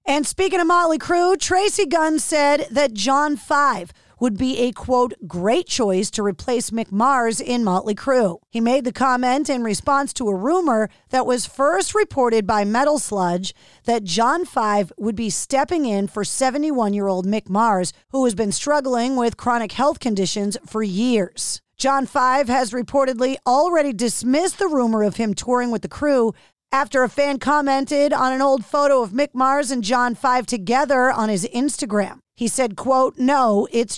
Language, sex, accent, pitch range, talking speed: English, female, American, 220-285 Hz, 175 wpm